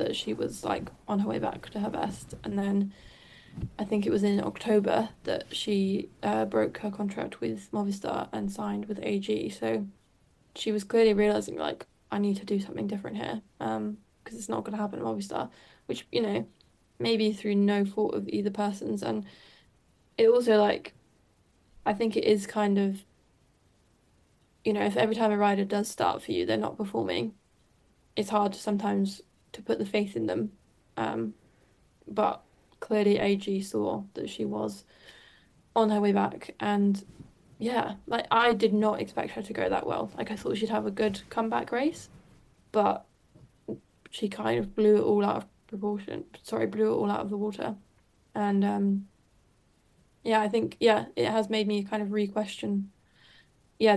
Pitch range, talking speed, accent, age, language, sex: 185-215 Hz, 180 wpm, British, 10-29, English, female